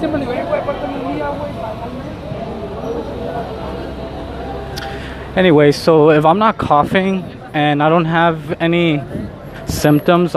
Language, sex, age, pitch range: English, male, 20-39, 130-165 Hz